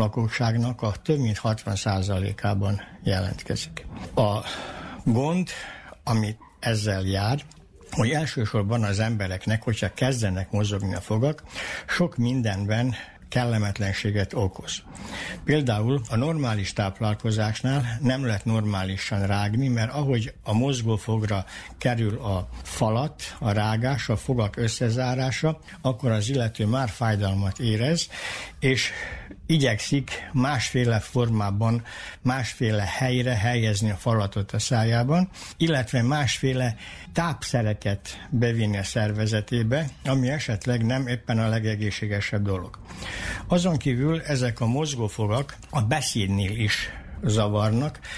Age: 60-79